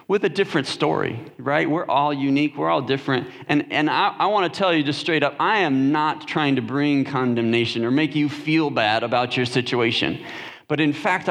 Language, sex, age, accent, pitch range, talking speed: English, male, 40-59, American, 145-190 Hz, 205 wpm